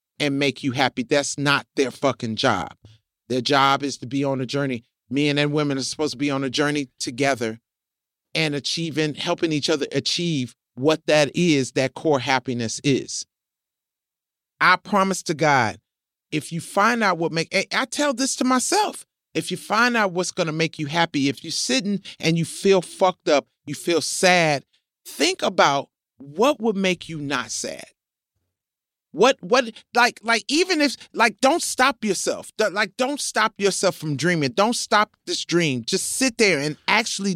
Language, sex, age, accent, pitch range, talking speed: English, male, 40-59, American, 145-210 Hz, 175 wpm